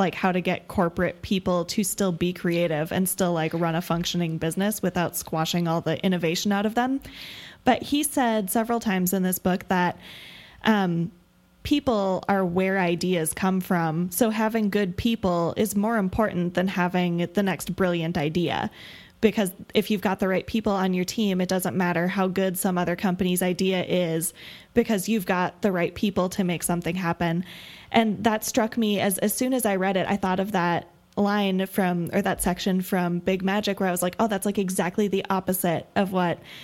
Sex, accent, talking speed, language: female, American, 195 wpm, English